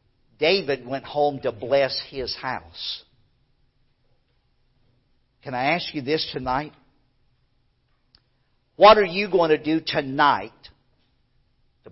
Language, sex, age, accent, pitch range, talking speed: English, male, 50-69, American, 130-220 Hz, 105 wpm